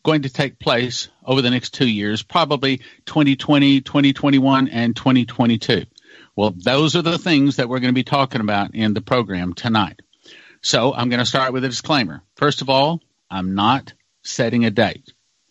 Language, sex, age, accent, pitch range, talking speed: English, male, 50-69, American, 115-150 Hz, 180 wpm